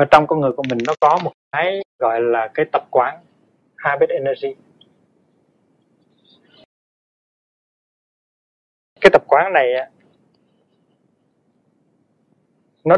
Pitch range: 125-155 Hz